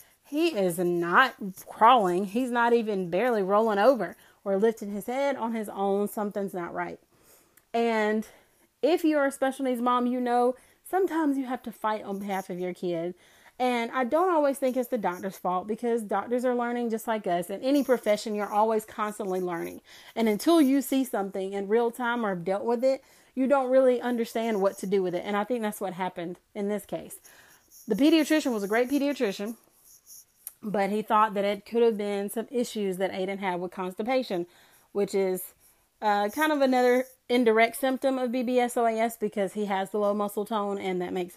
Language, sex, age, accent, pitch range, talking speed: English, female, 30-49, American, 200-250 Hz, 195 wpm